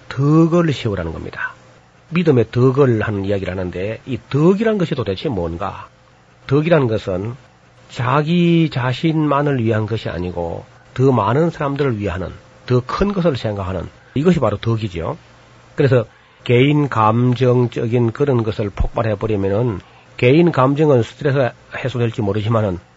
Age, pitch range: 40-59, 110-140 Hz